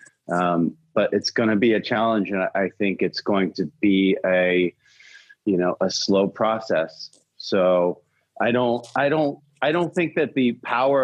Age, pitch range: 30-49, 95-115 Hz